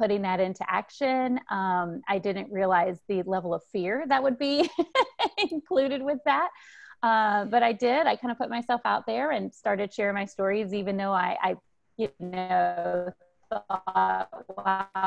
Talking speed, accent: 160 wpm, American